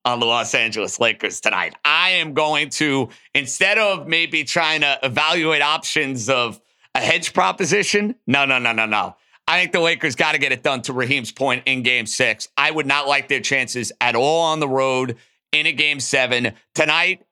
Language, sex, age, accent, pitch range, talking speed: English, male, 50-69, American, 140-180 Hz, 200 wpm